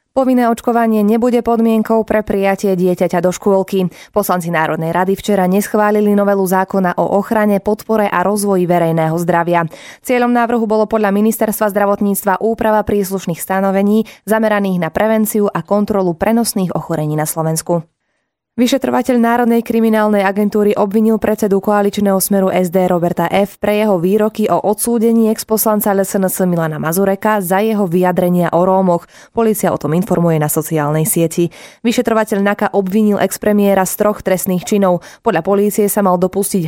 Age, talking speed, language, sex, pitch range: 20-39, 140 wpm, Slovak, female, 180-215 Hz